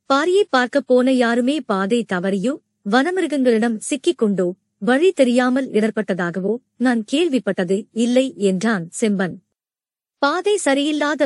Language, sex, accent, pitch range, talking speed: Tamil, male, native, 215-295 Hz, 95 wpm